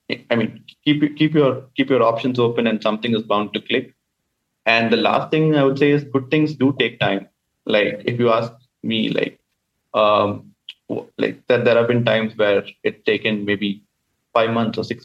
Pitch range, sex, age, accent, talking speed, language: 110-130 Hz, male, 30-49, Indian, 200 wpm, English